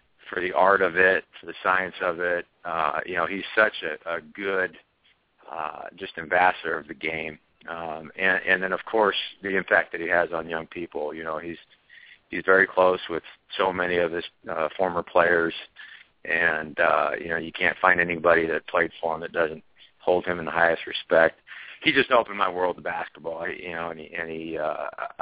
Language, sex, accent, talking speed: English, male, American, 205 wpm